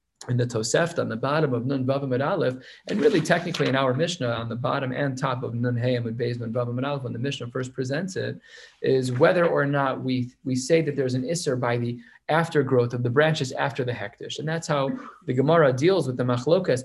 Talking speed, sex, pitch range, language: 220 wpm, male, 125-155 Hz, English